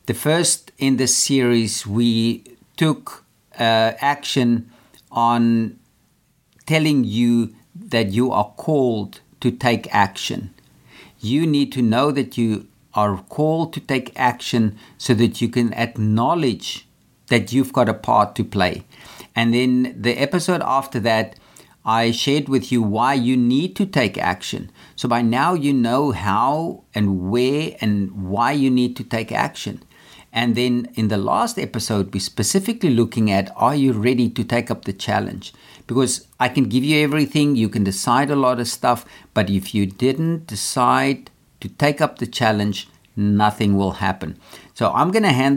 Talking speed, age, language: 160 wpm, 50-69, English